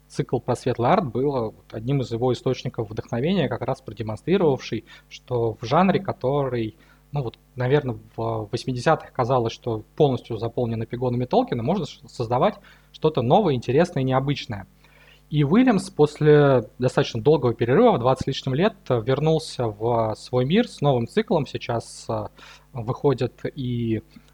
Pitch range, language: 120-150 Hz, Russian